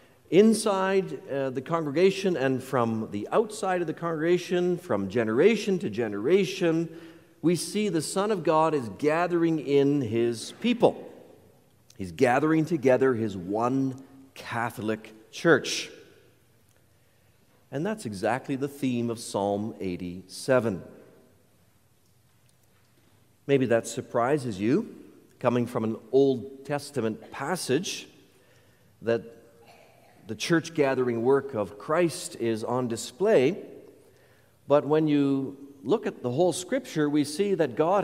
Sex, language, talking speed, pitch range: male, English, 115 wpm, 115-165 Hz